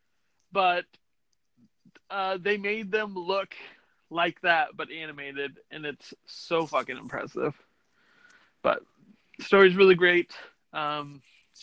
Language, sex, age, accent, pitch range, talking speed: English, male, 30-49, American, 150-205 Hz, 115 wpm